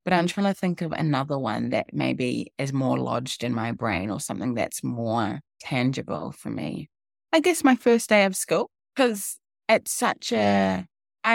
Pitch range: 135-195 Hz